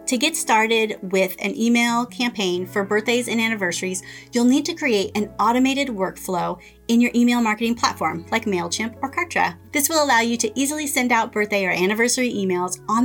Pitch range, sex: 190-245 Hz, female